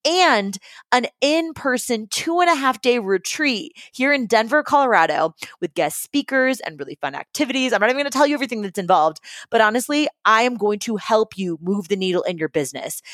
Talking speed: 185 wpm